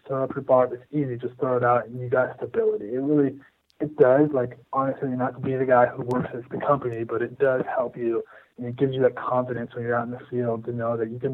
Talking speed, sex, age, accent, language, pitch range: 270 wpm, male, 20-39, American, English, 120-135 Hz